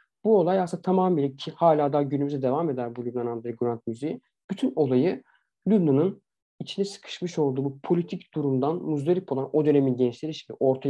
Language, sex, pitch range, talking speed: Turkish, male, 135-170 Hz, 170 wpm